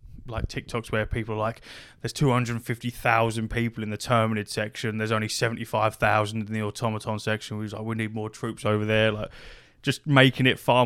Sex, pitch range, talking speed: male, 110-120 Hz, 220 wpm